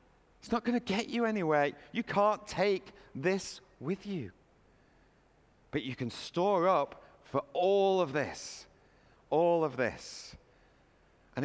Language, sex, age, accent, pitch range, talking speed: English, male, 40-59, British, 115-175 Hz, 135 wpm